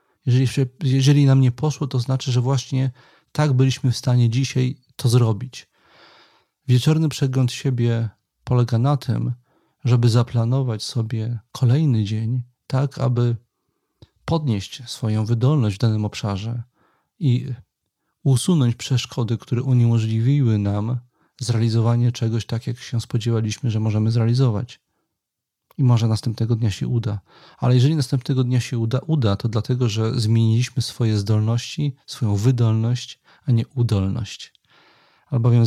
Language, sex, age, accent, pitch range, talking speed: Polish, male, 40-59, native, 115-130 Hz, 125 wpm